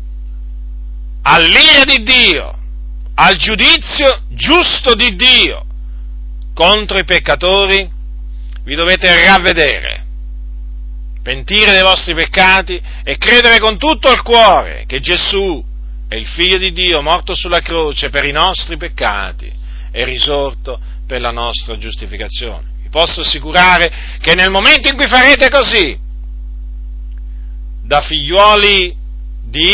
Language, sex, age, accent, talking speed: Italian, male, 40-59, native, 115 wpm